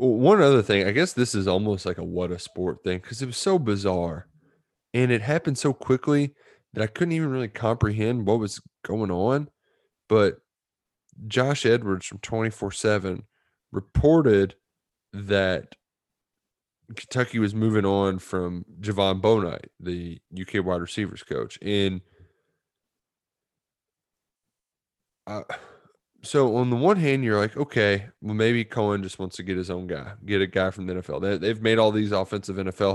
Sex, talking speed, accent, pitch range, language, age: male, 155 wpm, American, 95-120 Hz, English, 20-39